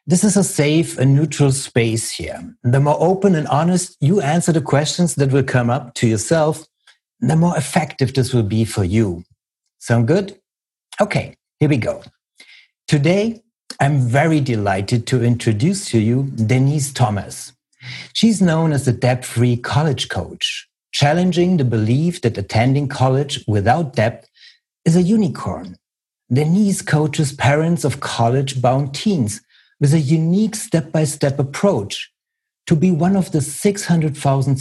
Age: 60-79